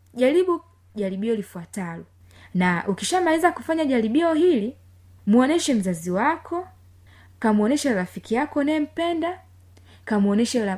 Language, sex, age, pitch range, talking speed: Swahili, female, 20-39, 175-245 Hz, 95 wpm